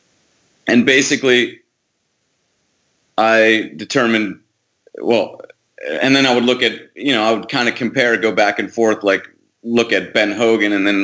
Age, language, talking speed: 30-49, English, 160 wpm